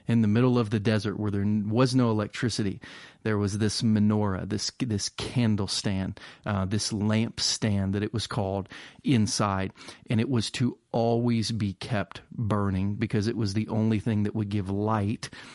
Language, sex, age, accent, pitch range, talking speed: English, male, 30-49, American, 105-120 Hz, 180 wpm